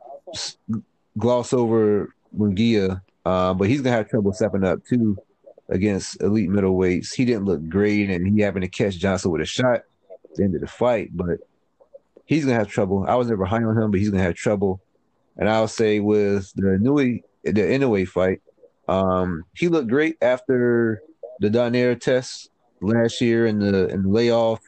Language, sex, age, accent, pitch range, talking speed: English, male, 30-49, American, 100-120 Hz, 175 wpm